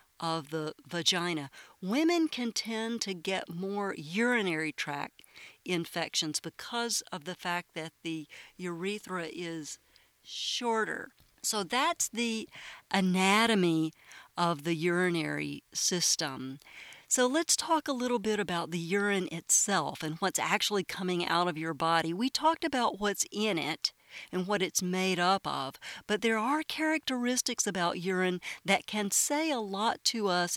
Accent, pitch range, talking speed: American, 170-225 Hz, 140 wpm